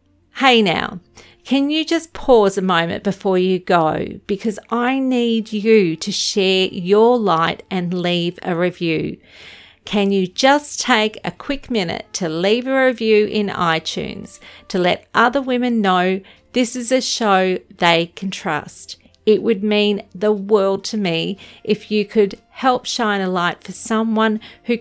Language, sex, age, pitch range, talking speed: English, female, 40-59, 180-220 Hz, 155 wpm